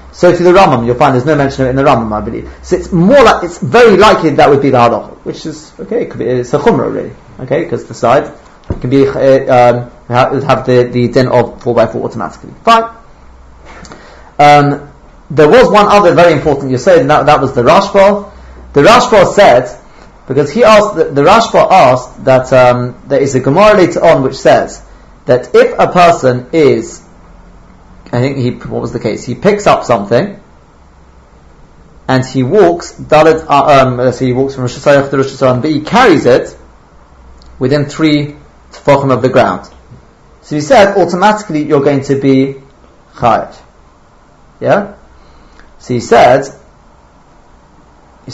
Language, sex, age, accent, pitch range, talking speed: English, male, 30-49, British, 120-155 Hz, 175 wpm